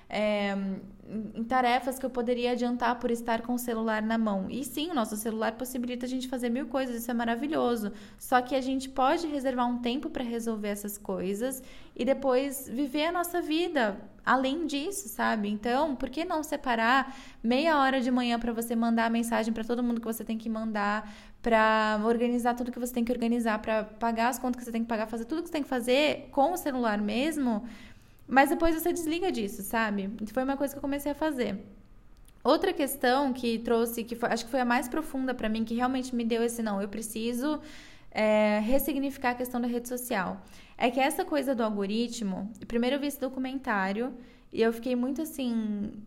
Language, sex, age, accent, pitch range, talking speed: Portuguese, female, 10-29, Brazilian, 225-265 Hz, 205 wpm